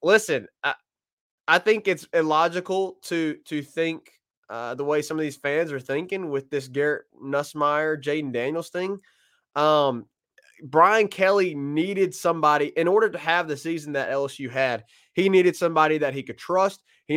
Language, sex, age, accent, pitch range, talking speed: English, male, 20-39, American, 140-170 Hz, 165 wpm